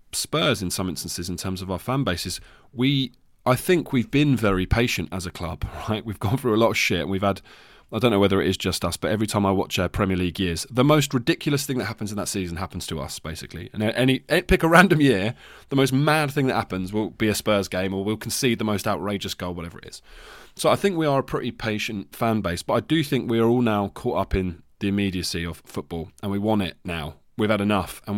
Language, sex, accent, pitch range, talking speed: English, male, British, 95-125 Hz, 255 wpm